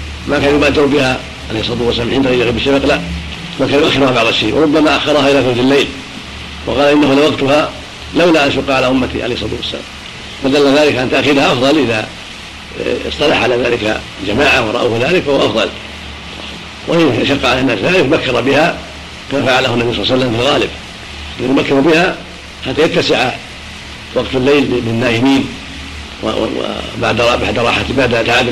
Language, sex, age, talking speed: Arabic, male, 50-69, 155 wpm